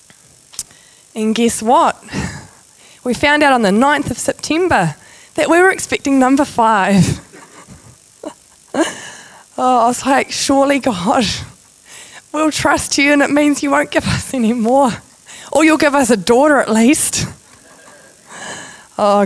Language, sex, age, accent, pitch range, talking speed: English, female, 20-39, Australian, 175-245 Hz, 135 wpm